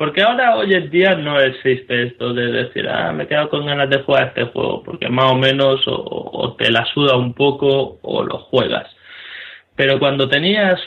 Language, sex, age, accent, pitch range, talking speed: Spanish, male, 20-39, Spanish, 120-135 Hz, 205 wpm